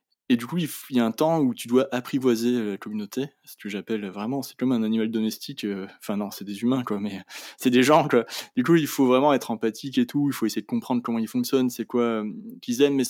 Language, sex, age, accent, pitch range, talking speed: French, male, 20-39, French, 110-140 Hz, 255 wpm